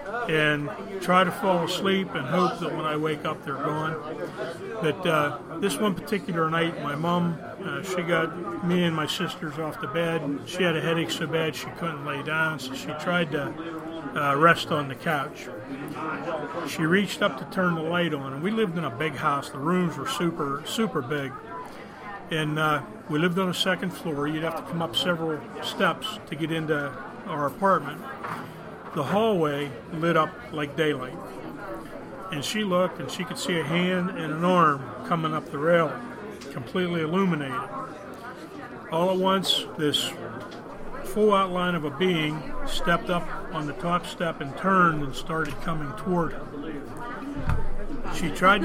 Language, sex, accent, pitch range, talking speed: English, male, American, 150-180 Hz, 175 wpm